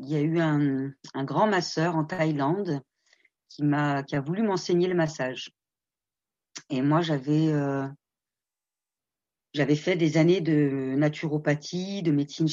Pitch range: 145-170 Hz